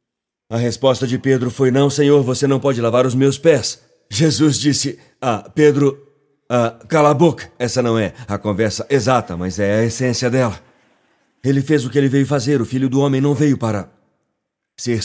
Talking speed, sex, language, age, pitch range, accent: 190 wpm, male, Portuguese, 40-59, 125-170 Hz, Brazilian